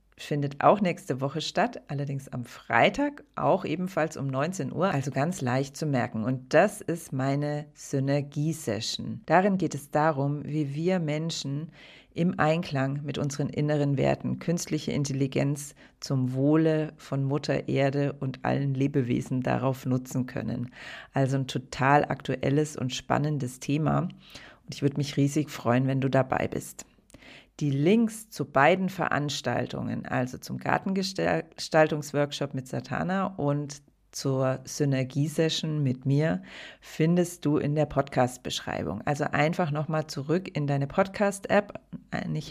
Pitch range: 135-155 Hz